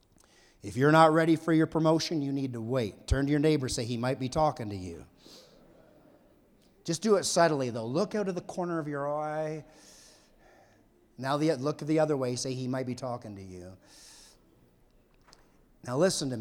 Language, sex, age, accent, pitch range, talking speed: English, male, 50-69, American, 120-160 Hz, 185 wpm